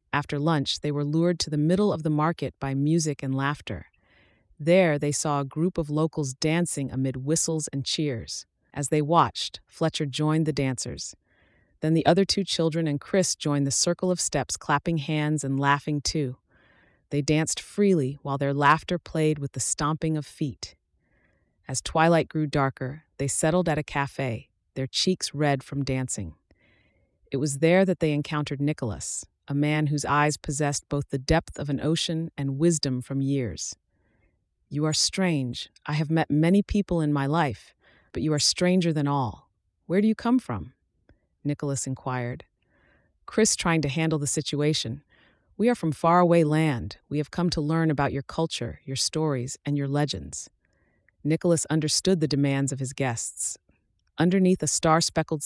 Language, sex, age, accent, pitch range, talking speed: English, female, 30-49, American, 135-160 Hz, 170 wpm